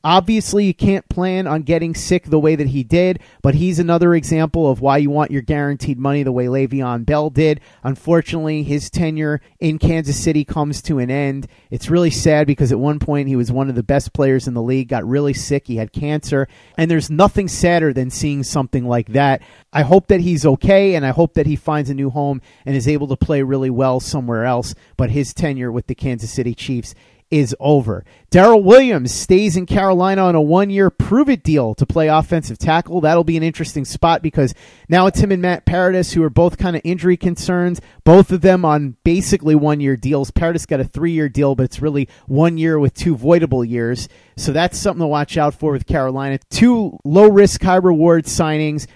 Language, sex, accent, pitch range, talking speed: English, male, American, 135-170 Hz, 210 wpm